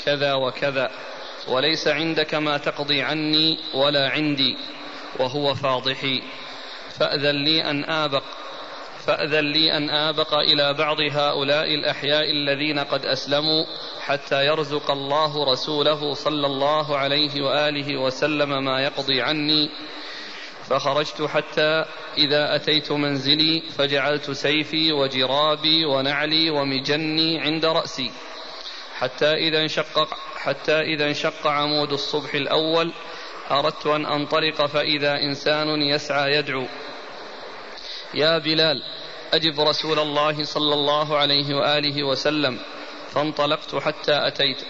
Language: Arabic